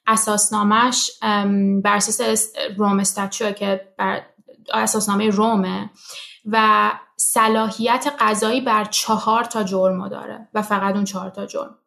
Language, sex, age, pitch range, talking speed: Persian, female, 20-39, 195-235 Hz, 110 wpm